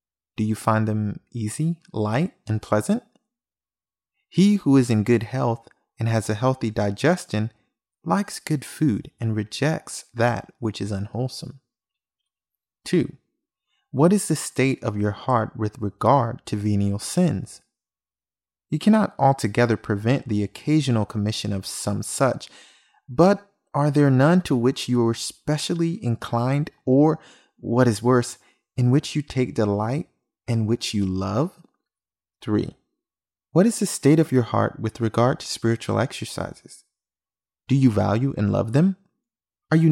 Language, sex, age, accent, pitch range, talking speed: English, male, 30-49, American, 110-145 Hz, 140 wpm